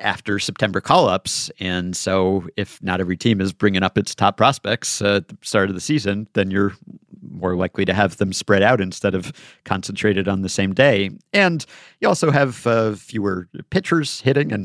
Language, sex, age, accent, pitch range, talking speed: English, male, 50-69, American, 95-125 Hz, 195 wpm